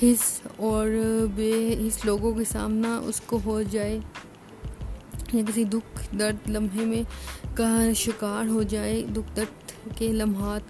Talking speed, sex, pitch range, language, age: 140 wpm, female, 205-230 Hz, Urdu, 20-39